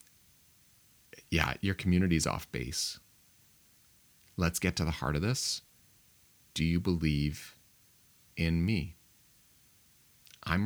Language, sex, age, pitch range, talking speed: English, male, 30-49, 75-90 Hz, 100 wpm